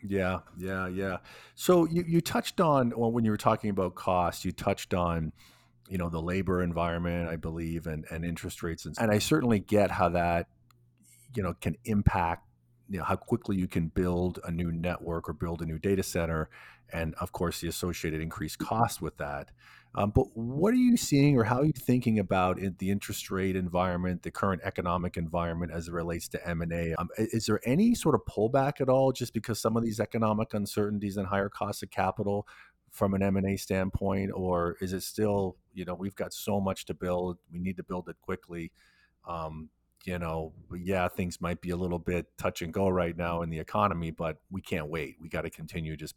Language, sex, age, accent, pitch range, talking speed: English, male, 40-59, American, 85-105 Hz, 205 wpm